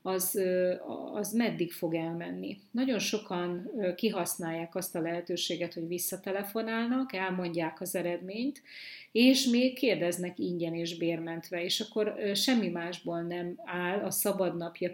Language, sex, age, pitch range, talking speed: Hungarian, female, 30-49, 170-210 Hz, 120 wpm